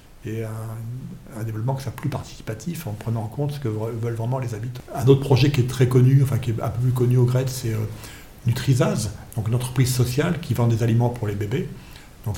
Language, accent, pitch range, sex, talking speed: English, French, 115-130 Hz, male, 235 wpm